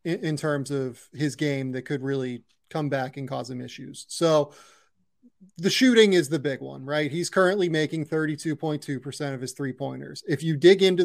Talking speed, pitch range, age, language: 185 wpm, 140-170 Hz, 30-49, English